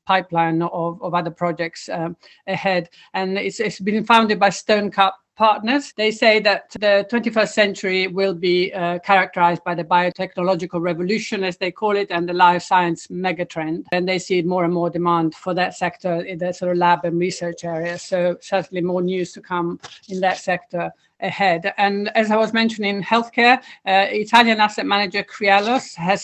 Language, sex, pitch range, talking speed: English, female, 175-200 Hz, 185 wpm